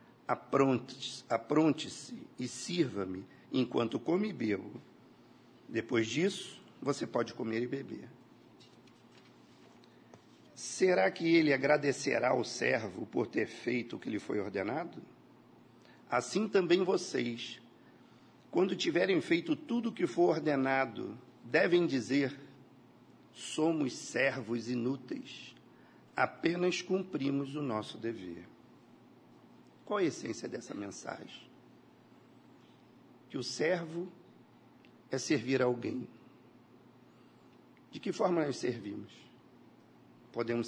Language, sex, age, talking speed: Portuguese, male, 50-69, 95 wpm